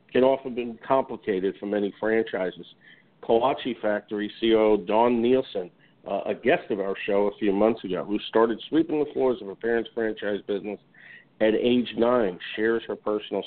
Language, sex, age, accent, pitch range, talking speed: English, male, 50-69, American, 105-120 Hz, 170 wpm